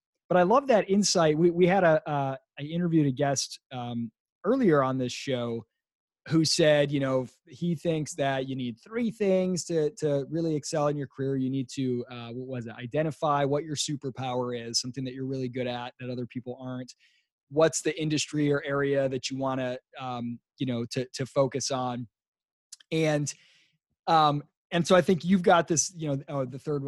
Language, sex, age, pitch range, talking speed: English, male, 20-39, 130-170 Hz, 200 wpm